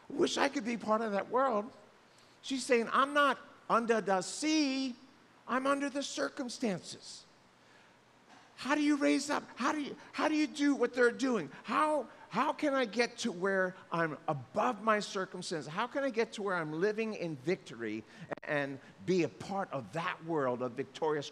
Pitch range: 145-230 Hz